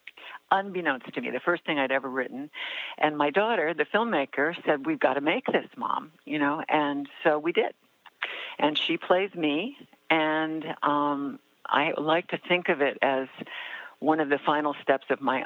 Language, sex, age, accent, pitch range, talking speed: English, female, 60-79, American, 130-160 Hz, 185 wpm